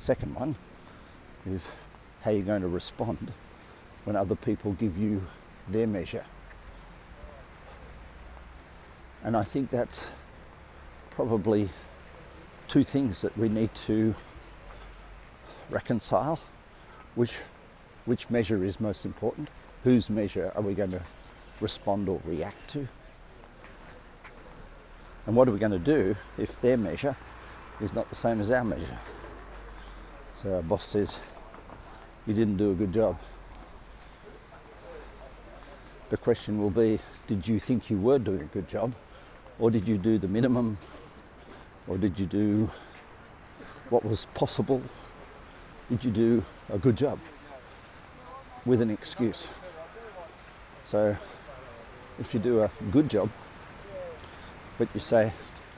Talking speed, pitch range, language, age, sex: 125 wpm, 90-115 Hz, English, 50-69, male